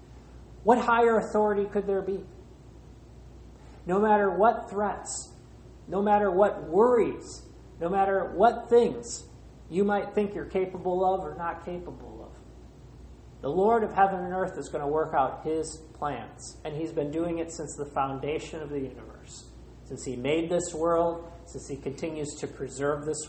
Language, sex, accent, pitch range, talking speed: English, male, American, 135-190 Hz, 160 wpm